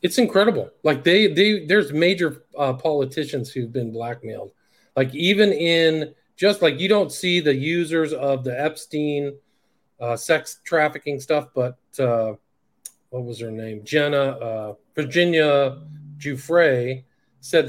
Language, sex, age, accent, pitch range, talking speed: English, male, 40-59, American, 135-180 Hz, 135 wpm